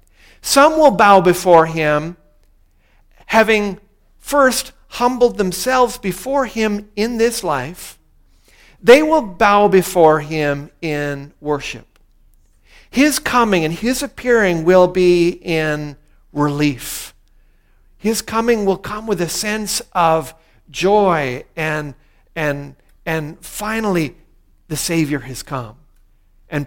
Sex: male